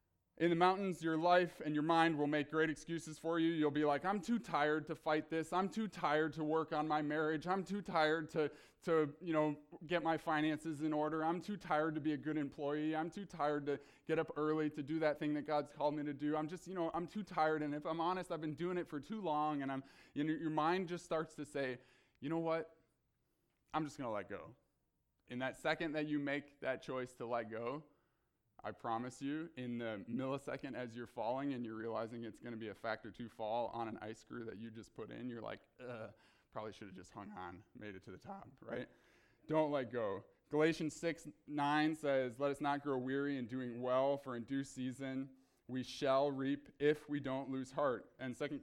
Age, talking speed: 20-39, 235 wpm